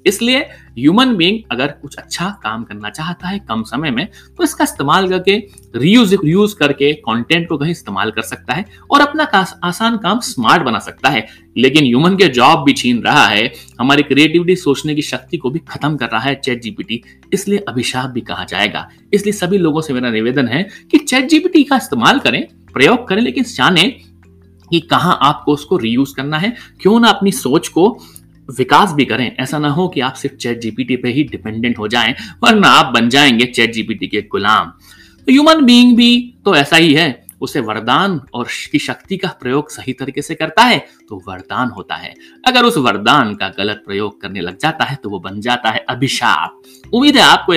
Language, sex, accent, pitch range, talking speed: Hindi, male, native, 120-200 Hz, 145 wpm